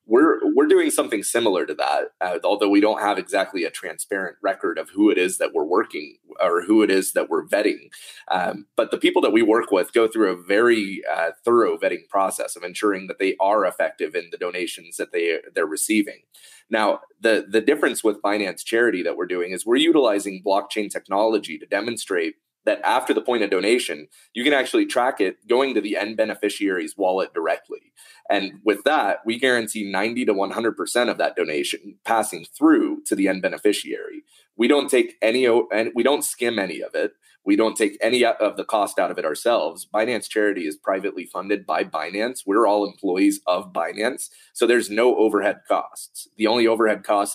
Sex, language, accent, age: male, English, American, 30-49